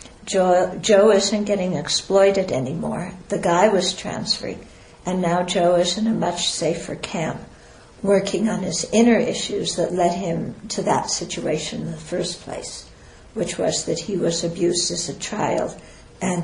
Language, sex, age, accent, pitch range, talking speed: English, female, 60-79, American, 170-210 Hz, 160 wpm